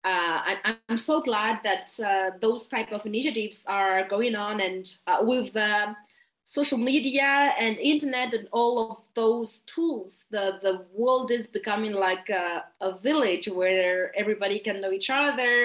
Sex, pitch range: female, 195-250 Hz